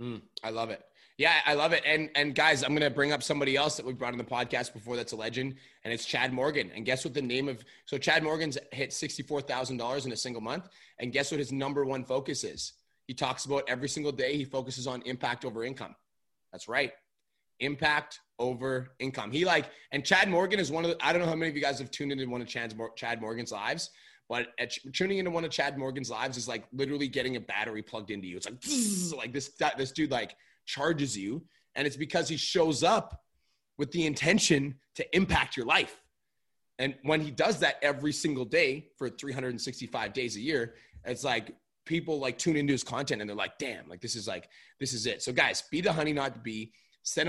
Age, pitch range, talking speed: 20-39, 125-150 Hz, 225 wpm